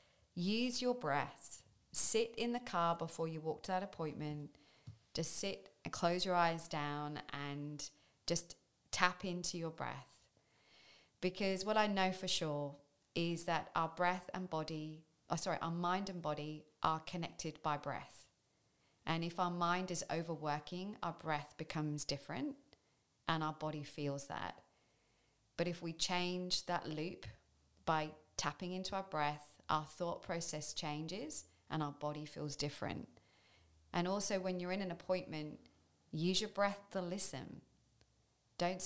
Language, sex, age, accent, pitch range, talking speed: English, female, 30-49, British, 150-185 Hz, 150 wpm